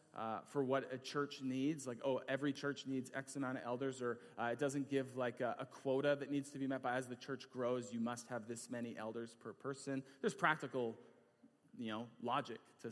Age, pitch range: 30-49, 120-145 Hz